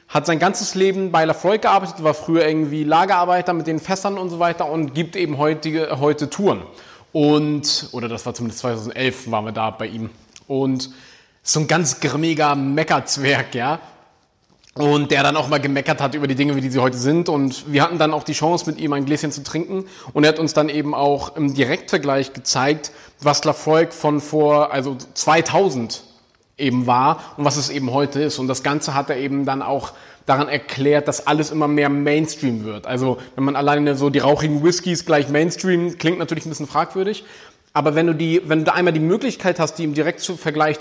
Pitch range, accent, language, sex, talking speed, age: 140-165 Hz, German, German, male, 205 wpm, 30-49